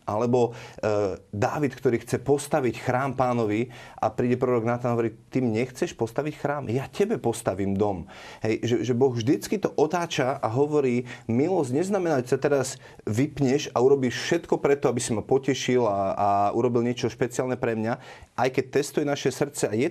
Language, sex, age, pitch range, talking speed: Slovak, male, 30-49, 110-135 Hz, 180 wpm